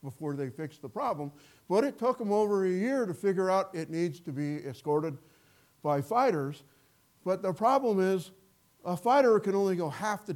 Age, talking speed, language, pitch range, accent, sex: 50-69, 190 wpm, English, 135-180 Hz, American, male